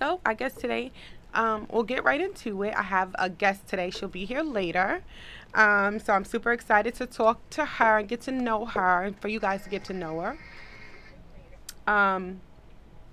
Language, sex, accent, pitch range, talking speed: English, female, American, 195-255 Hz, 195 wpm